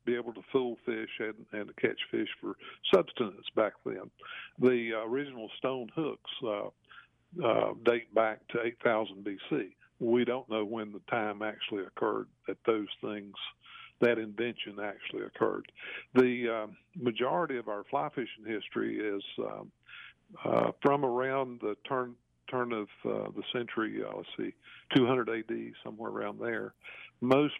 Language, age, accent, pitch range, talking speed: English, 50-69, American, 110-125 Hz, 155 wpm